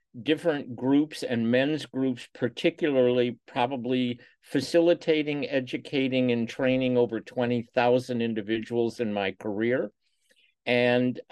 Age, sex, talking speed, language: 50-69, male, 95 wpm, English